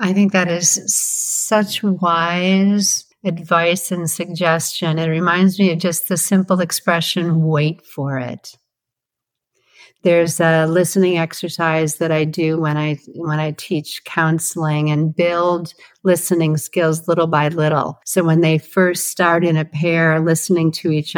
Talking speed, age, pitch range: 145 wpm, 50-69, 155-175 Hz